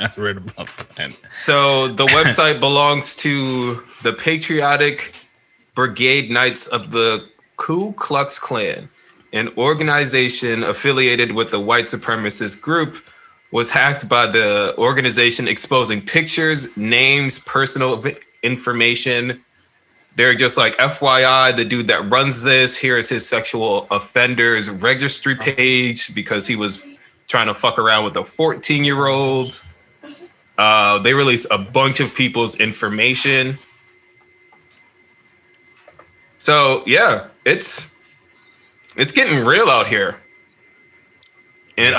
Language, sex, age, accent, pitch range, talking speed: English, male, 20-39, American, 115-140 Hz, 110 wpm